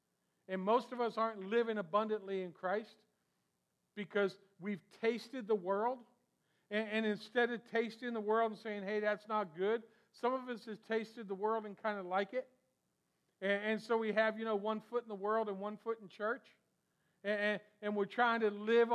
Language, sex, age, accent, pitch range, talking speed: English, male, 50-69, American, 185-220 Hz, 195 wpm